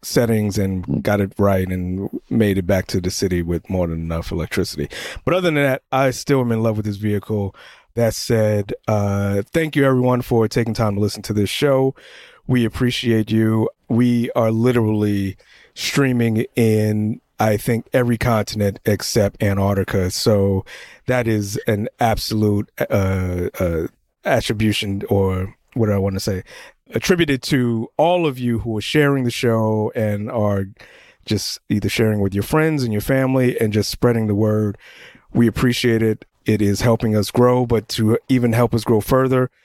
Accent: American